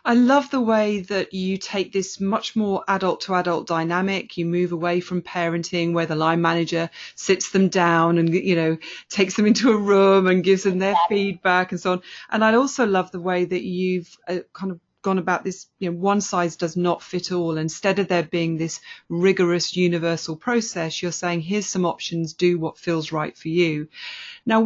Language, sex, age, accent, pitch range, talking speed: English, female, 30-49, British, 170-195 Hz, 200 wpm